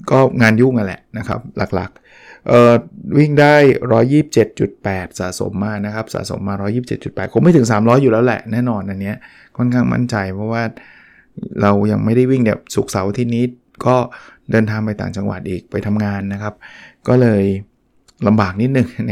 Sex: male